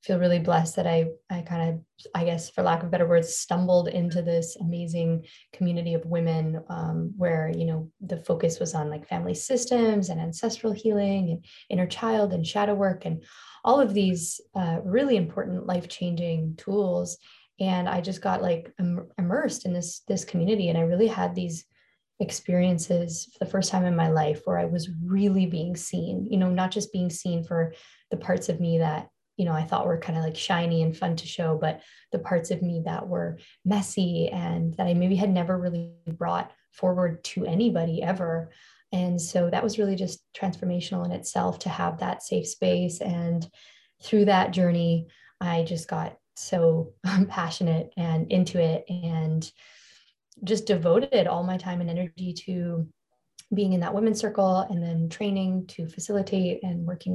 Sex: female